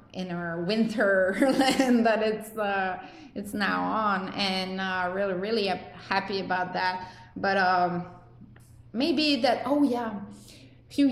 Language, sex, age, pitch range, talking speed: English, female, 20-39, 195-245 Hz, 140 wpm